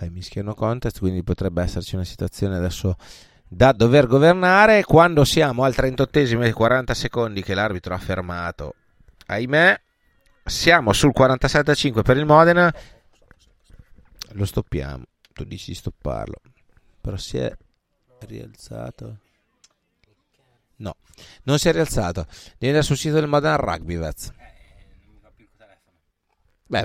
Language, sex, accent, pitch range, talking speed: Italian, male, native, 105-150 Hz, 125 wpm